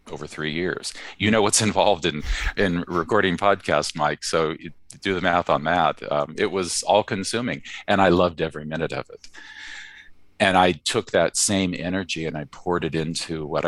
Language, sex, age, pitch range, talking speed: English, male, 50-69, 80-90 Hz, 180 wpm